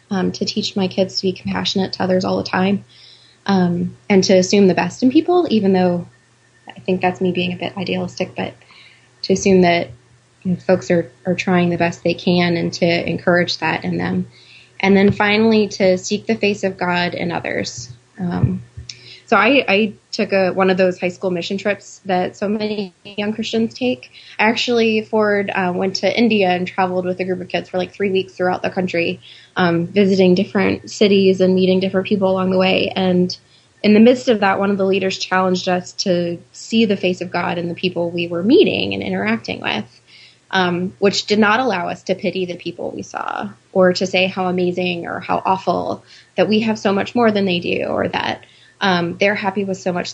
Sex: female